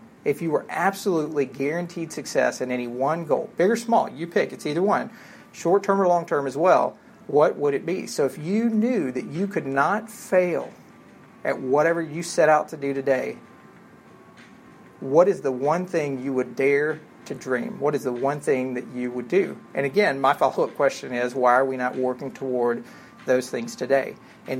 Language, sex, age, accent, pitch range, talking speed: English, male, 40-59, American, 130-170 Hz, 195 wpm